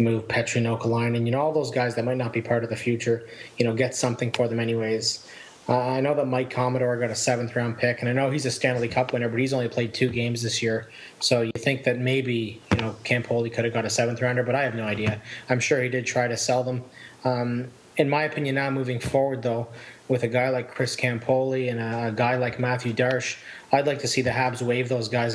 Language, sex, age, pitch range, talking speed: English, male, 20-39, 115-130 Hz, 255 wpm